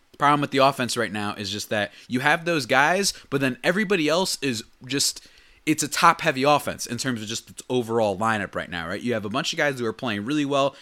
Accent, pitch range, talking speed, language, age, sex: American, 110-150 Hz, 245 wpm, English, 20-39, male